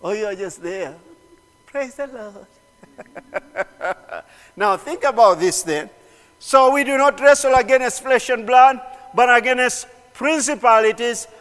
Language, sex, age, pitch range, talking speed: English, male, 50-69, 195-265 Hz, 130 wpm